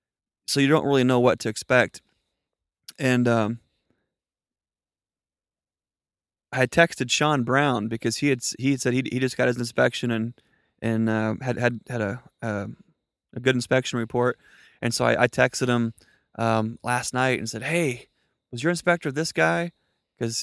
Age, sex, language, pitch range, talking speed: 20-39, male, English, 115-130 Hz, 160 wpm